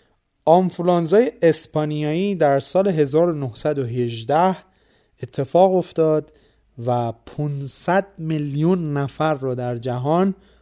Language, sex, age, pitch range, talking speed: Persian, male, 30-49, 125-155 Hz, 80 wpm